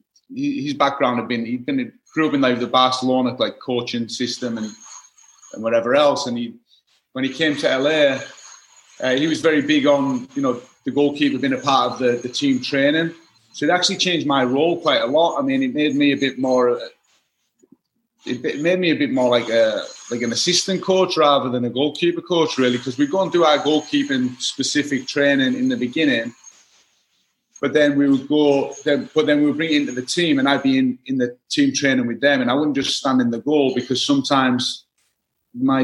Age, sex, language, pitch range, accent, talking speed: 30-49, male, English, 125-170 Hz, British, 210 wpm